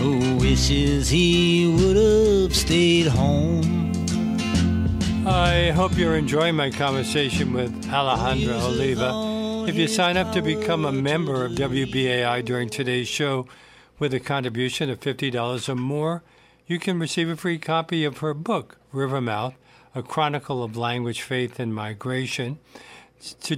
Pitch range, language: 120-150 Hz, English